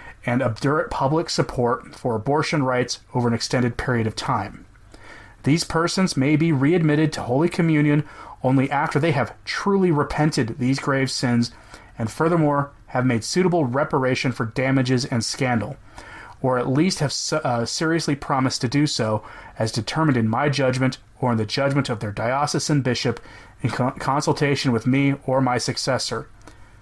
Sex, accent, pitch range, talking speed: male, American, 115-150 Hz, 155 wpm